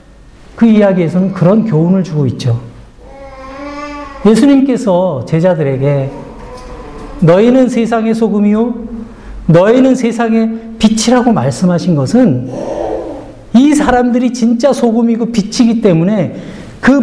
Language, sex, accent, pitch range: Korean, male, native, 185-255 Hz